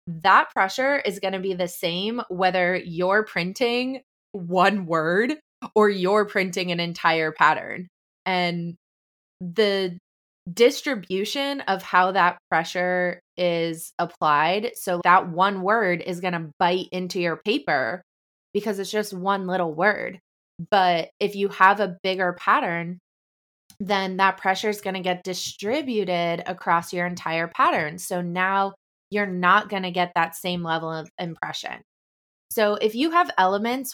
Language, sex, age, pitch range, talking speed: English, female, 20-39, 175-205 Hz, 145 wpm